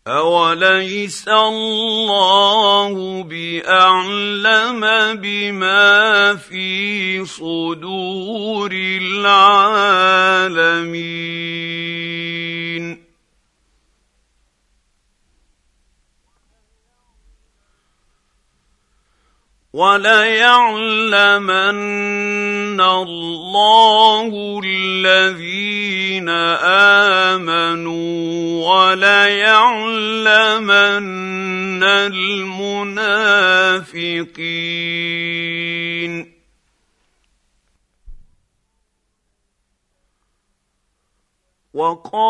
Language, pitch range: Arabic, 170-205 Hz